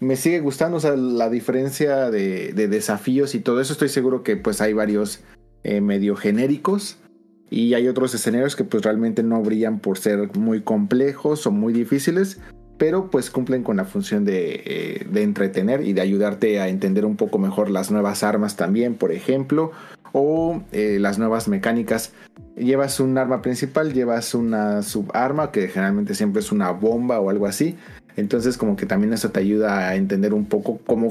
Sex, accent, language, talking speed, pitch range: male, Mexican, Spanish, 185 wpm, 105-145 Hz